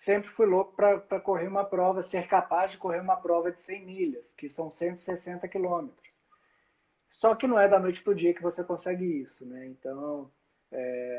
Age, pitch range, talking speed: 20-39, 160-195 Hz, 195 wpm